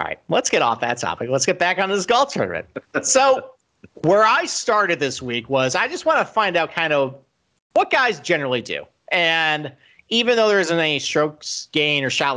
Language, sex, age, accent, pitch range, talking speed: English, male, 40-59, American, 125-165 Hz, 210 wpm